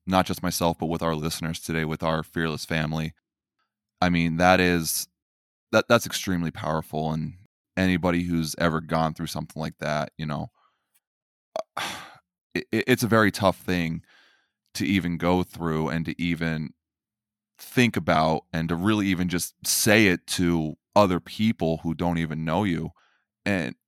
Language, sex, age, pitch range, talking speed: English, male, 20-39, 80-100 Hz, 155 wpm